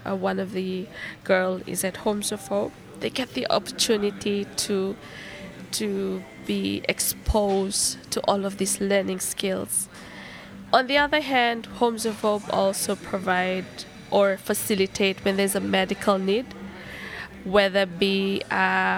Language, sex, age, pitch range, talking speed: English, female, 20-39, 195-210 Hz, 135 wpm